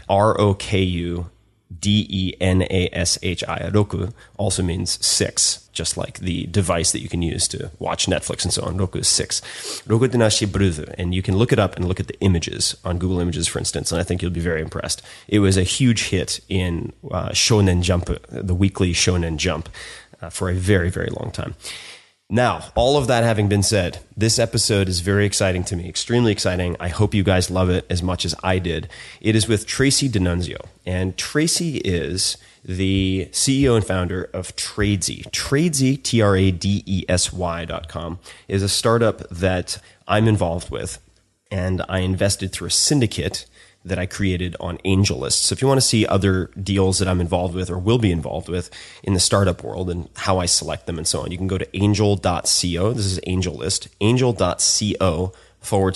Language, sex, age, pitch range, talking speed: English, male, 30-49, 90-105 Hz, 180 wpm